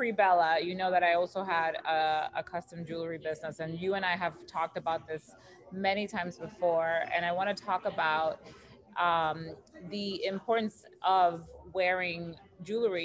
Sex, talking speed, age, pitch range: female, 160 wpm, 20-39, 170-205 Hz